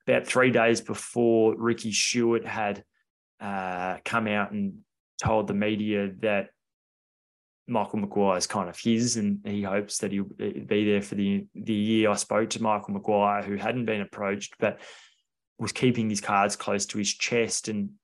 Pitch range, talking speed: 105-115 Hz, 170 wpm